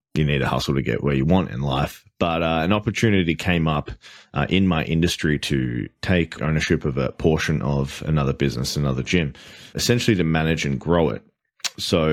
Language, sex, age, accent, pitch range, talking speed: English, male, 20-39, Australian, 70-85 Hz, 195 wpm